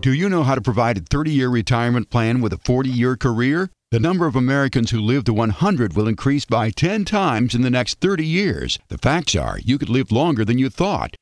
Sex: male